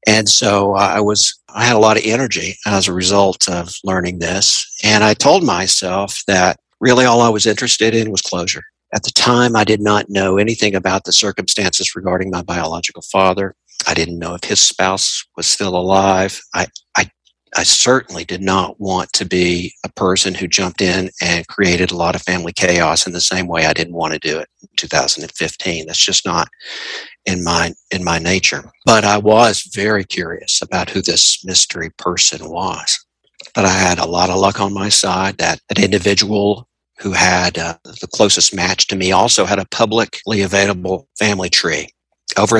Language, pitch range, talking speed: English, 90-105 Hz, 185 wpm